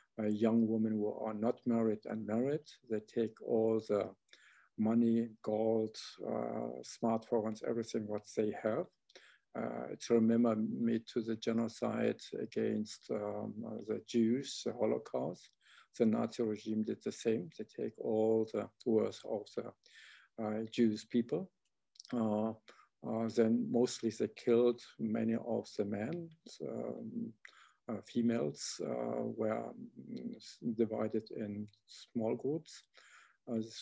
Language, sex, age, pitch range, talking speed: English, male, 50-69, 110-120 Hz, 130 wpm